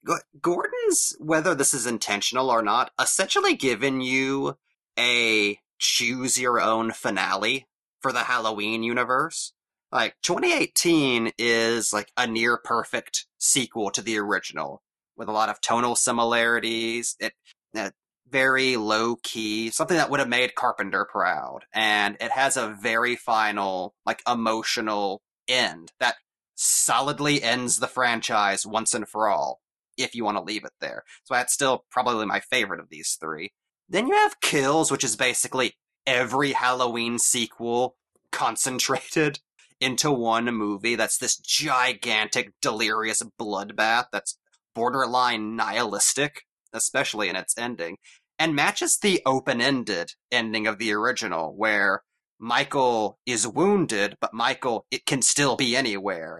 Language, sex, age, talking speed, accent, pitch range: English, male, 30-49, 130 wpm, American, 115-130 Hz